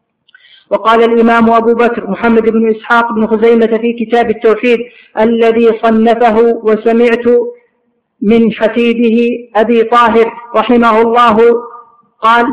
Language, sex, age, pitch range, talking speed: Arabic, female, 50-69, 225-235 Hz, 105 wpm